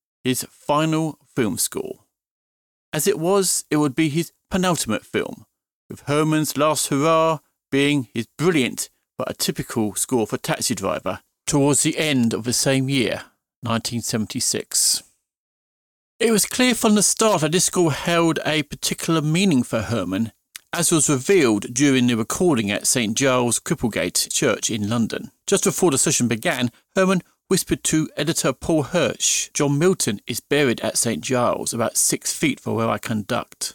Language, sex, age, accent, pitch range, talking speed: English, male, 40-59, British, 125-170 Hz, 155 wpm